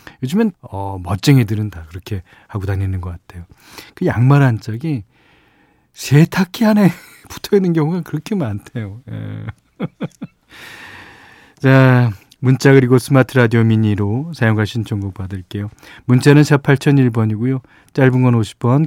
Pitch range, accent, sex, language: 105-140 Hz, native, male, Korean